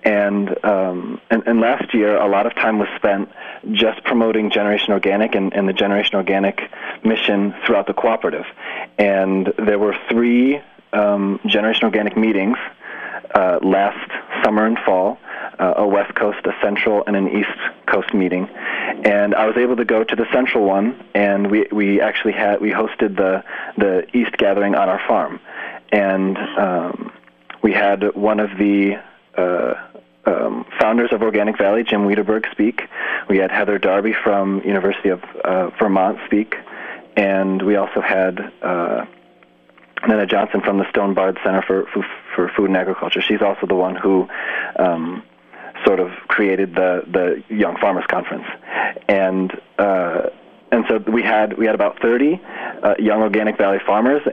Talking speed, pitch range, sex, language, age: 160 wpm, 95-110 Hz, male, English, 30-49